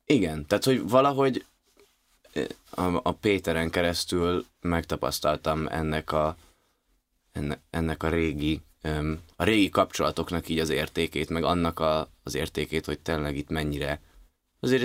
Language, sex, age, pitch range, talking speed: Hungarian, male, 20-39, 75-90 Hz, 100 wpm